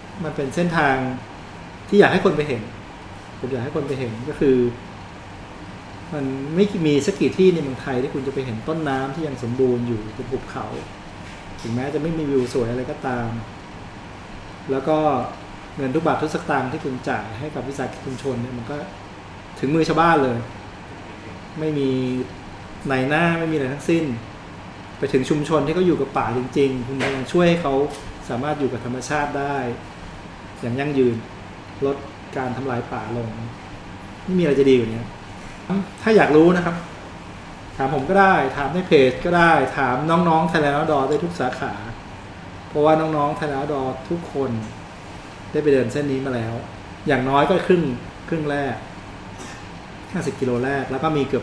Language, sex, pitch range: Thai, male, 115-150 Hz